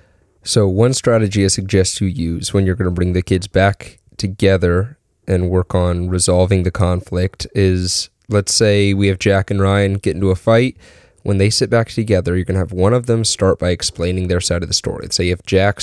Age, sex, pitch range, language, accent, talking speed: 20-39, male, 90-105 Hz, English, American, 220 wpm